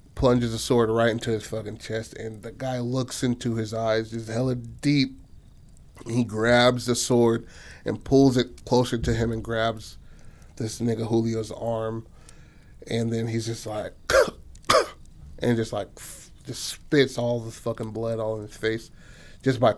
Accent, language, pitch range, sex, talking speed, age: American, English, 105-120 Hz, male, 160 wpm, 30-49